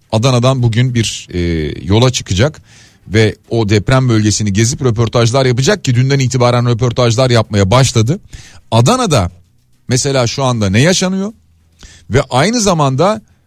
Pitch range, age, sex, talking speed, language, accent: 110-140 Hz, 40-59, male, 125 wpm, Turkish, native